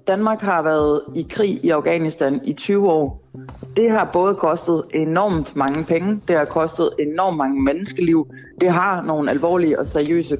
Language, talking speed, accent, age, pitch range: Danish, 165 wpm, native, 60-79, 145-190 Hz